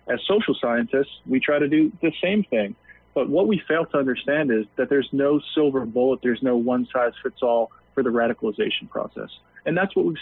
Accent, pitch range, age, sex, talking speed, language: American, 120-150 Hz, 40-59, male, 195 wpm, English